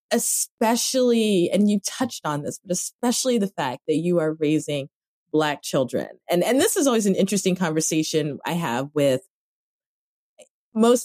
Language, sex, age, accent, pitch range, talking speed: English, female, 30-49, American, 150-195 Hz, 150 wpm